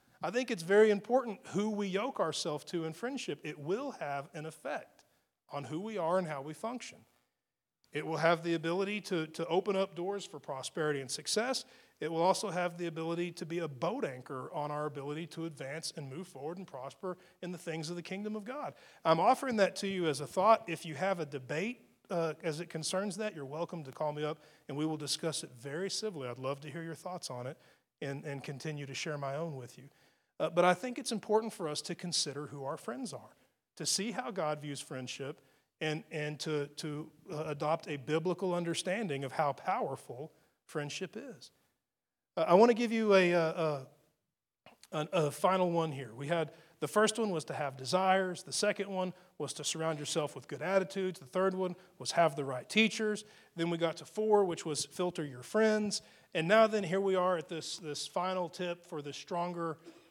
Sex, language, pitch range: male, English, 150-190 Hz